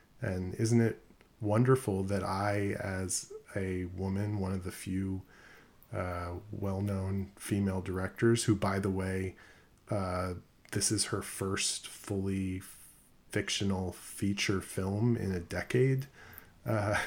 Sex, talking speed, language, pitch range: male, 120 wpm, English, 95-115 Hz